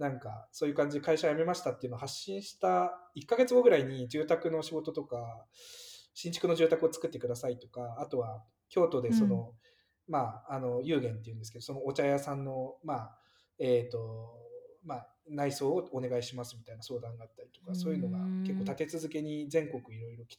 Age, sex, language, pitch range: 20-39, male, Japanese, 120-185 Hz